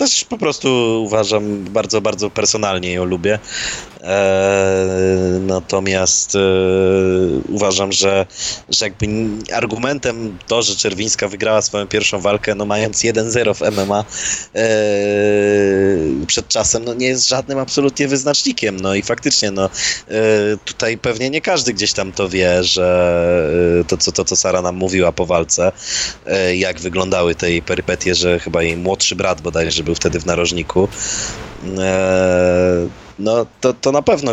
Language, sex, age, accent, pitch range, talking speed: Polish, male, 20-39, native, 95-120 Hz, 135 wpm